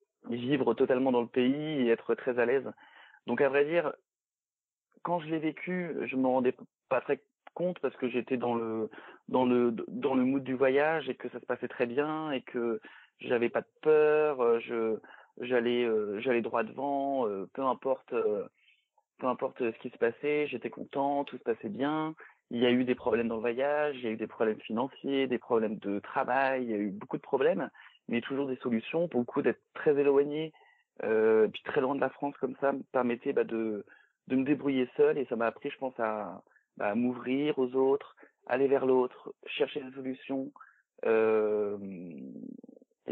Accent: French